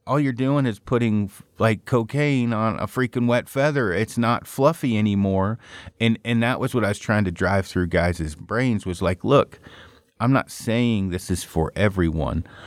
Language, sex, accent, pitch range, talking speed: English, male, American, 90-115 Hz, 185 wpm